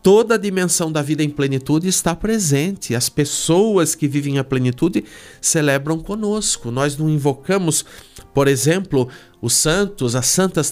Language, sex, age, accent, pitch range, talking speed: Portuguese, male, 50-69, Brazilian, 125-165 Hz, 145 wpm